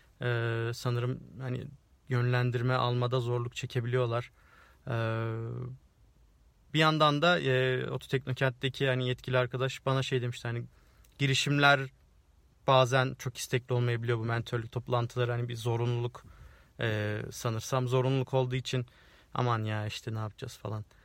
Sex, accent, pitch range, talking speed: male, native, 115-130 Hz, 120 wpm